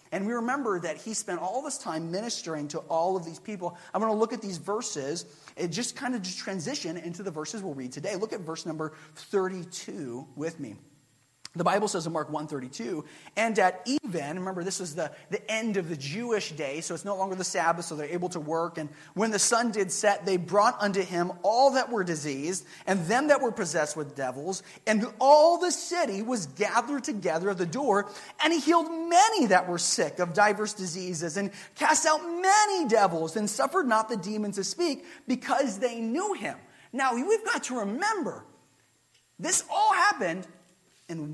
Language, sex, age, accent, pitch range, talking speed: English, male, 30-49, American, 160-225 Hz, 200 wpm